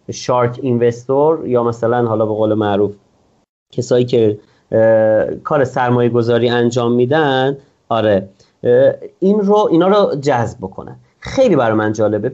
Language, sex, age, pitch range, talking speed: Persian, male, 30-49, 120-180 Hz, 125 wpm